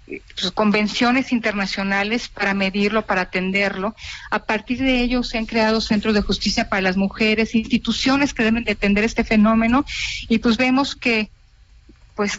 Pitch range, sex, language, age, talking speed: 200-230 Hz, female, Spanish, 40-59, 155 wpm